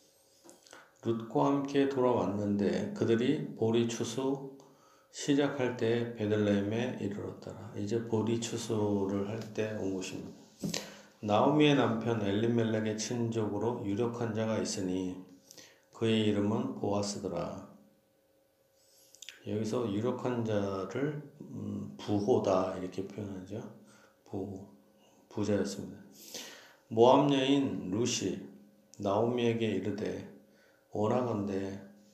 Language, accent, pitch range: Korean, native, 100-115 Hz